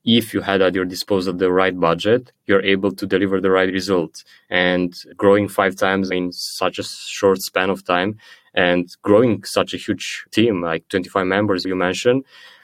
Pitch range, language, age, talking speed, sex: 95-105 Hz, English, 20-39, 180 wpm, male